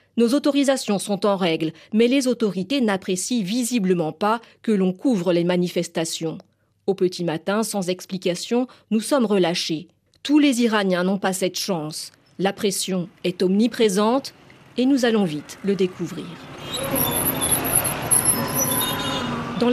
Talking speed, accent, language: 130 wpm, French, French